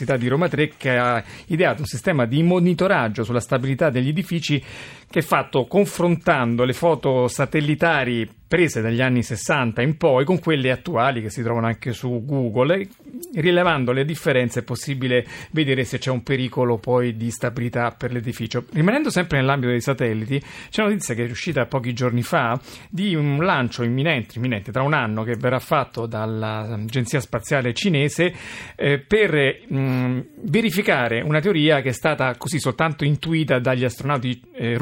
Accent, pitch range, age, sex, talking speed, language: native, 120-155 Hz, 40-59, male, 165 wpm, Italian